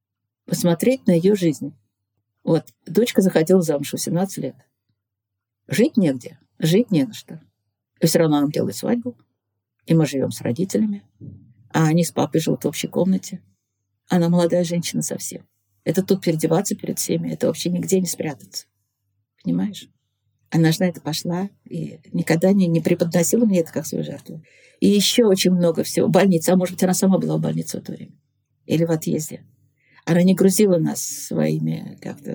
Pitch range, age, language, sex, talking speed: 145-185 Hz, 50-69, Russian, female, 170 wpm